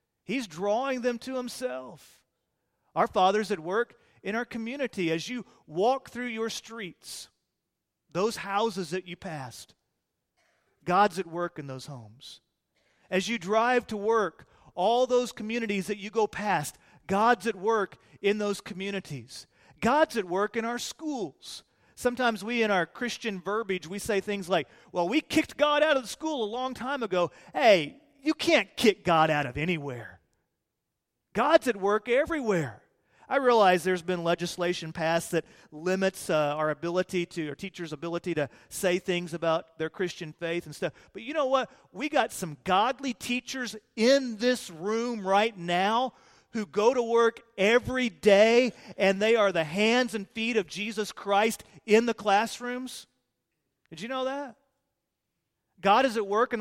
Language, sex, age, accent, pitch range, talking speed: English, male, 40-59, American, 175-240 Hz, 160 wpm